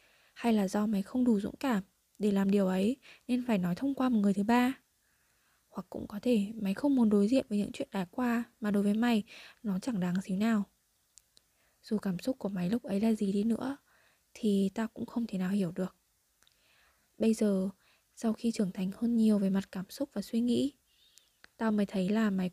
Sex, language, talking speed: female, Vietnamese, 220 wpm